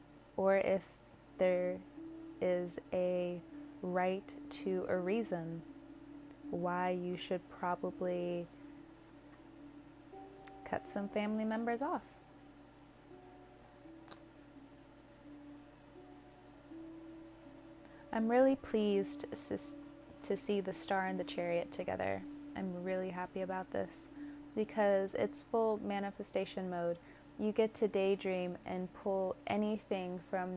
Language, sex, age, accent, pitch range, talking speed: English, female, 20-39, American, 180-290 Hz, 90 wpm